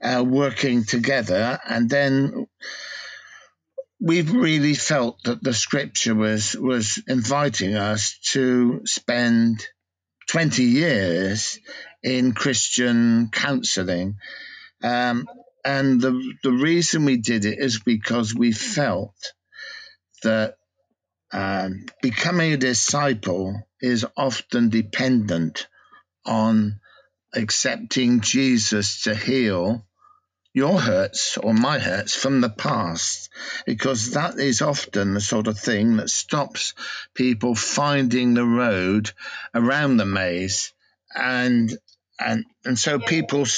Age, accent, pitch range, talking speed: 50-69, British, 110-140 Hz, 105 wpm